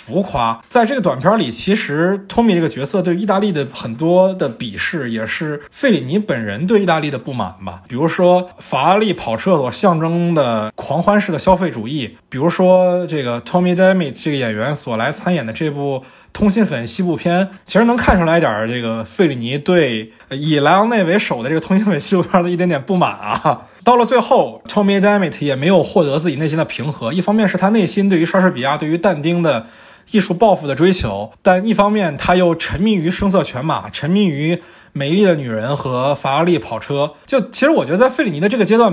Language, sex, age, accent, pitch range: Chinese, male, 20-39, native, 140-190 Hz